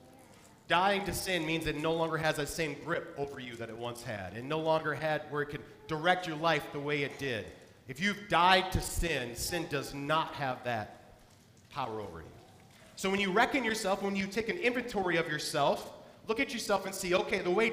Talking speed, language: 215 wpm, English